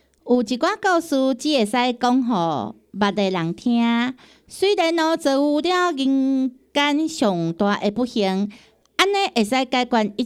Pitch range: 195-280 Hz